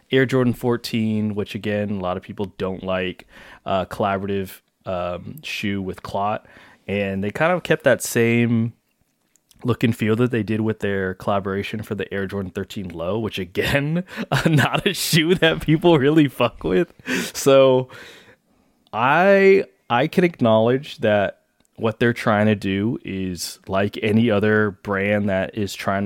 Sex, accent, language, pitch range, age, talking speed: male, American, English, 95-115 Hz, 20-39, 160 wpm